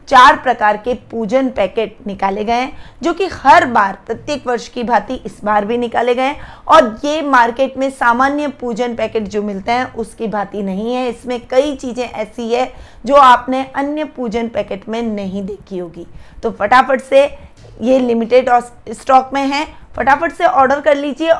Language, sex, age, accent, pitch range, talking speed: Hindi, female, 20-39, native, 225-275 Hz, 175 wpm